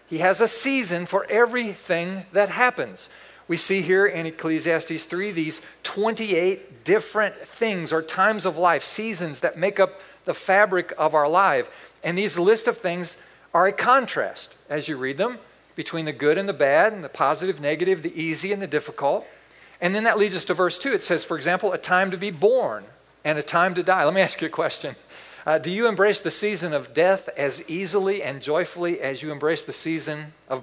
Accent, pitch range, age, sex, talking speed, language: American, 160-205 Hz, 50-69, male, 205 wpm, English